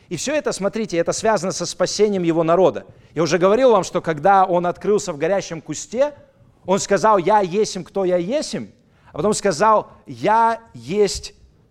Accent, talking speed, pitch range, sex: native, 170 wpm, 160-200 Hz, male